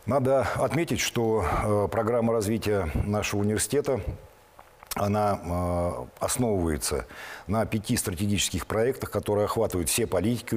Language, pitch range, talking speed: Russian, 85-110 Hz, 95 wpm